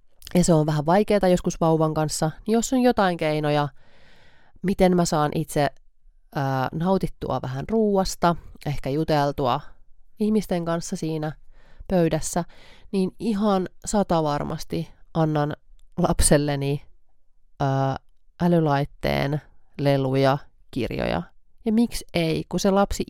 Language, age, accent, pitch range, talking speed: Finnish, 30-49, native, 140-180 Hz, 110 wpm